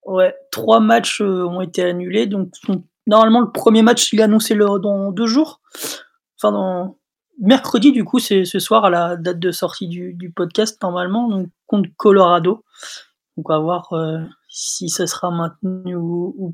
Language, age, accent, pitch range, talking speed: French, 20-39, French, 180-225 Hz, 175 wpm